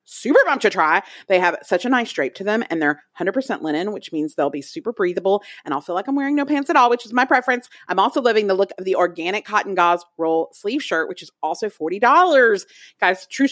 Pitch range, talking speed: 175-270 Hz, 245 wpm